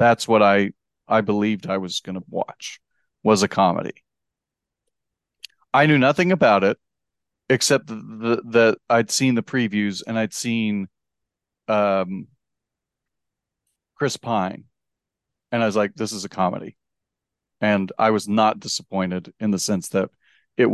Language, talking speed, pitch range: English, 140 wpm, 100-120 Hz